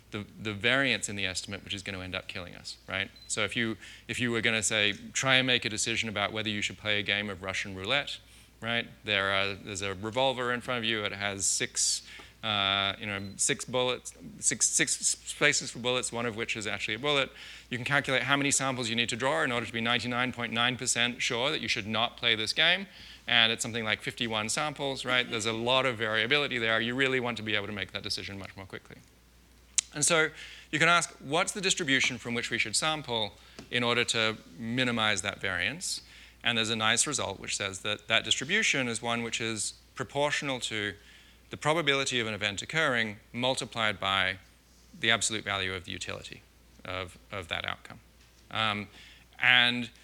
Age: 30-49